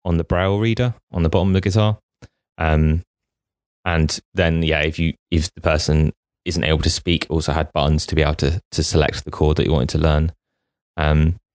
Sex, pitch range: male, 80-95 Hz